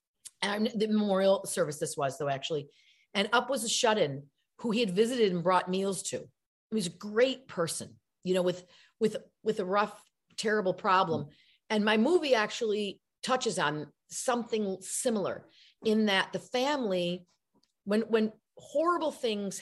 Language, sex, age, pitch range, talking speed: English, female, 40-59, 180-220 Hz, 155 wpm